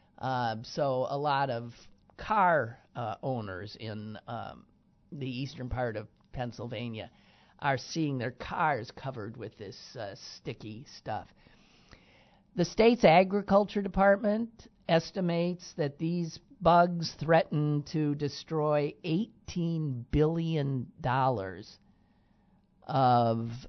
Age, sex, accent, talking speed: 50-69, male, American, 100 wpm